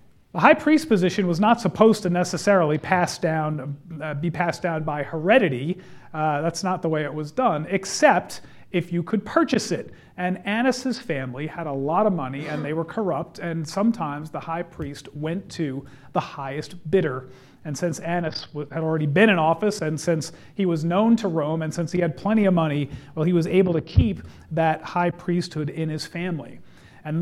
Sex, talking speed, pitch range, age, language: male, 195 wpm, 155-210 Hz, 40-59, English